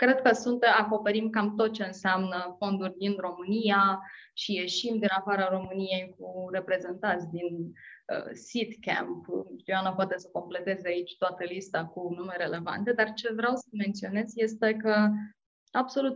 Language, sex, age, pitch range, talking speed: Romanian, female, 20-39, 195-255 Hz, 145 wpm